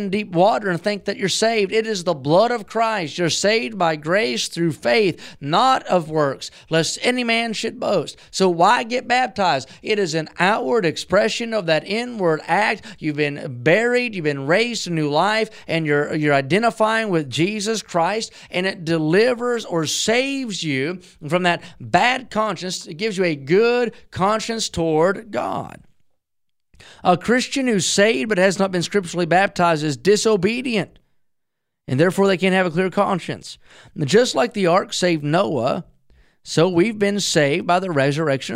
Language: English